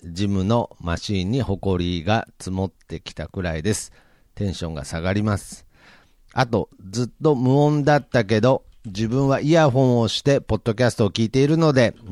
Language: Japanese